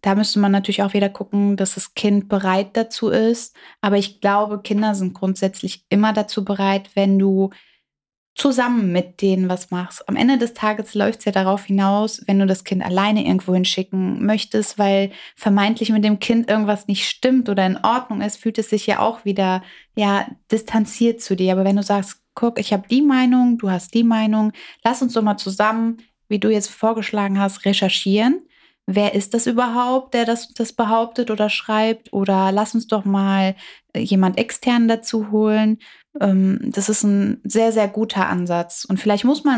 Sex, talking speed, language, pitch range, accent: female, 190 wpm, German, 195-230 Hz, German